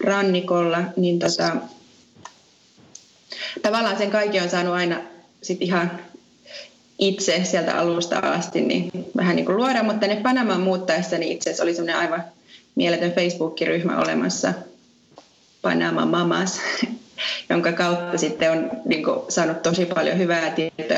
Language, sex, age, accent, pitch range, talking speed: Finnish, female, 30-49, native, 170-200 Hz, 130 wpm